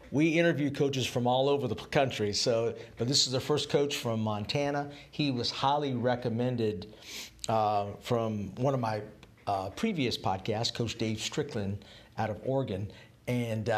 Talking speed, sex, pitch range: 155 wpm, male, 110-130 Hz